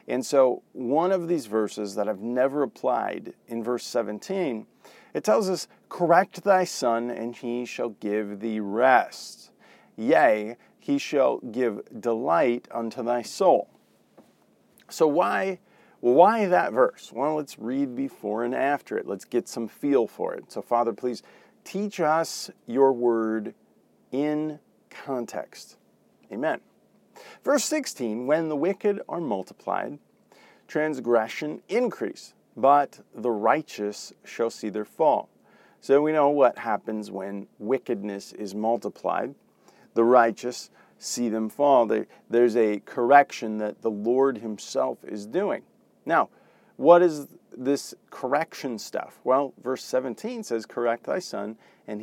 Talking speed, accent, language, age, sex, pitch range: 135 wpm, American, English, 40-59, male, 110-150 Hz